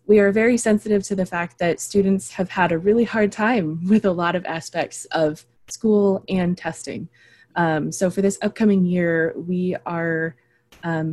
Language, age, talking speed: English, 20-39, 180 wpm